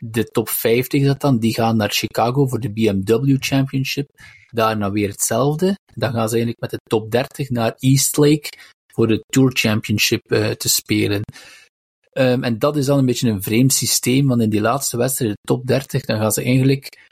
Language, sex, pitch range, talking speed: Dutch, male, 110-135 Hz, 195 wpm